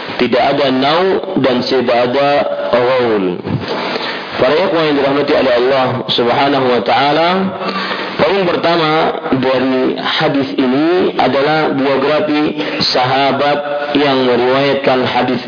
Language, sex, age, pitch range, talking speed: Malay, male, 50-69, 125-150 Hz, 100 wpm